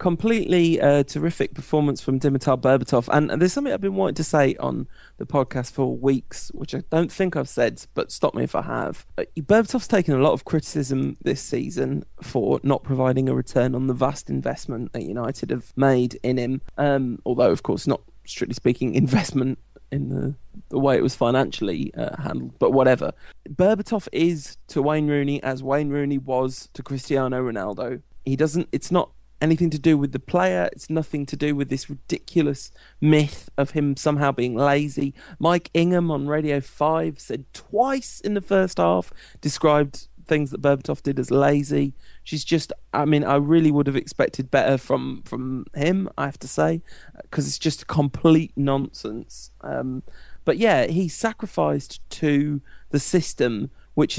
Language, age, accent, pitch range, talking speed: English, 20-39, British, 135-160 Hz, 175 wpm